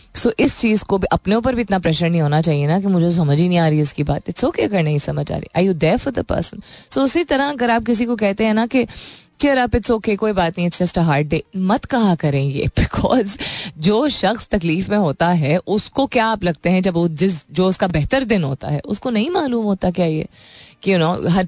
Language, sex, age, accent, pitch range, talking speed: Hindi, female, 20-39, native, 155-215 Hz, 255 wpm